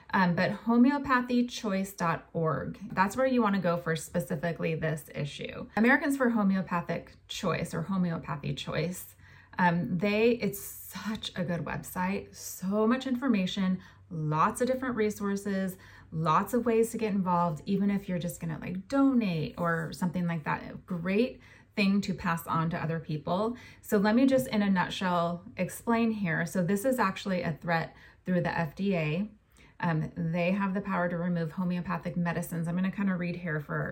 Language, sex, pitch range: English, female, 170-215 Hz